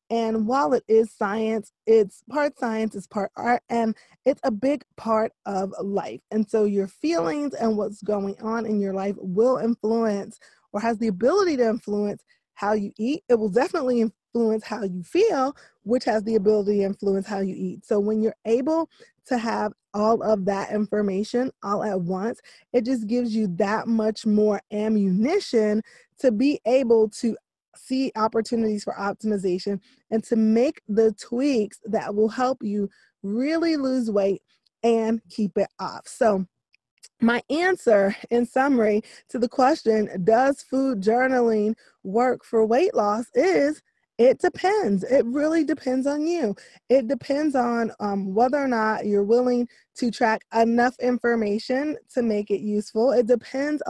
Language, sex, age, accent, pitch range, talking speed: English, female, 20-39, American, 210-250 Hz, 160 wpm